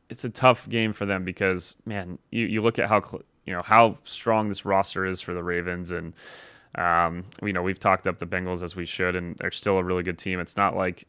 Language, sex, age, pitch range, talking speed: English, male, 20-39, 90-105 Hz, 245 wpm